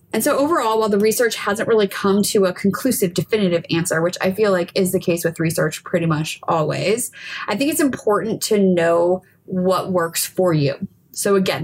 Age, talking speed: 20-39, 195 wpm